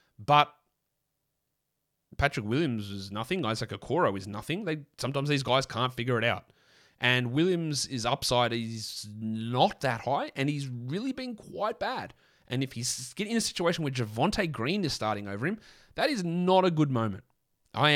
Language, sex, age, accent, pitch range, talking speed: English, male, 30-49, Australian, 105-140 Hz, 175 wpm